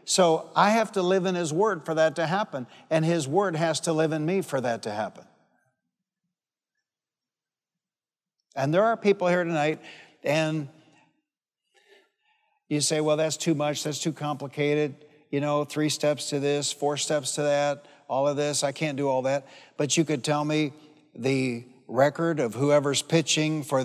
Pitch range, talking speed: 150-185 Hz, 175 wpm